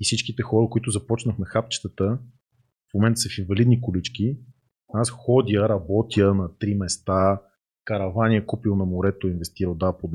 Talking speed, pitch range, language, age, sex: 160 wpm, 95-120 Hz, Bulgarian, 30-49, male